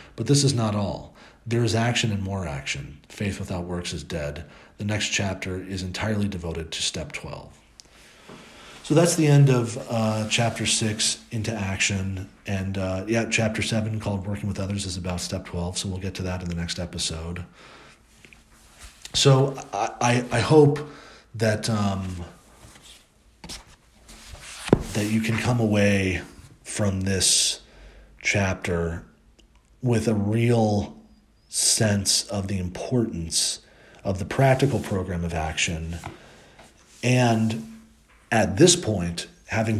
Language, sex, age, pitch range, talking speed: English, male, 40-59, 90-115 Hz, 135 wpm